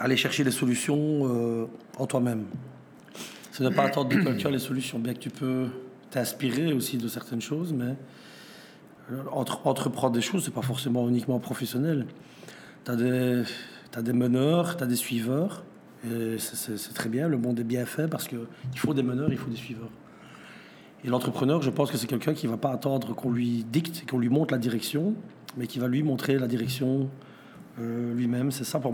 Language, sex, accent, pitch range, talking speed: French, male, French, 120-140 Hz, 195 wpm